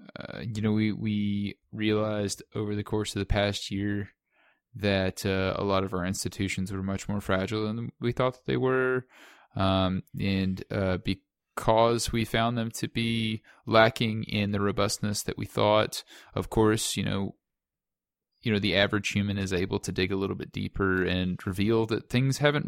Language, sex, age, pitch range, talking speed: English, male, 20-39, 100-115 Hz, 180 wpm